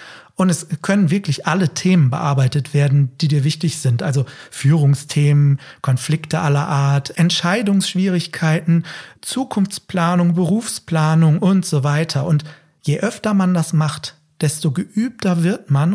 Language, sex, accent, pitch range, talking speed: German, male, German, 145-185 Hz, 125 wpm